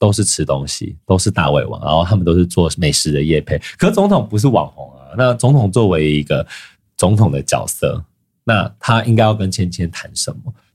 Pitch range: 85-110 Hz